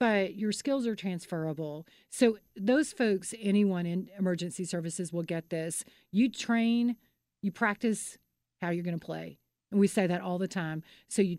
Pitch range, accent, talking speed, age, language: 175-225 Hz, American, 175 wpm, 40-59, English